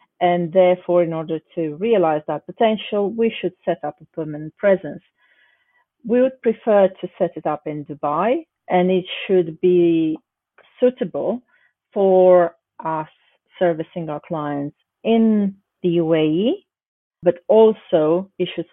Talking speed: 130 wpm